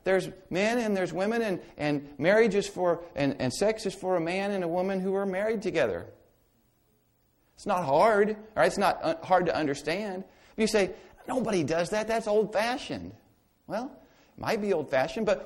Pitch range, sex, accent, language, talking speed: 180-220 Hz, male, American, English, 190 wpm